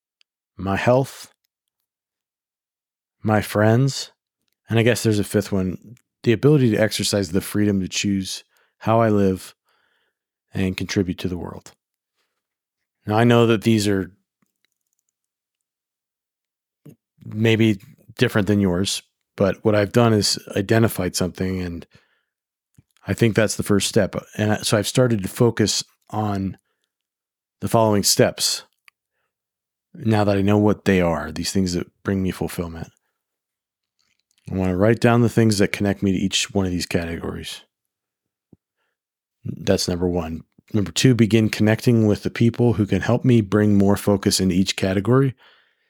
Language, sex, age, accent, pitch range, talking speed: English, male, 40-59, American, 95-110 Hz, 145 wpm